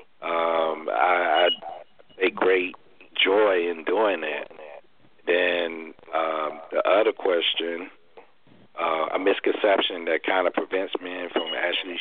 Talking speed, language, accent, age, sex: 115 wpm, English, American, 50-69, male